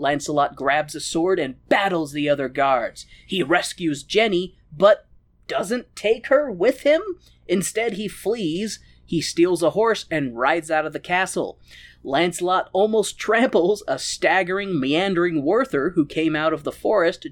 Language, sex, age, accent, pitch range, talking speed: English, male, 20-39, American, 155-245 Hz, 150 wpm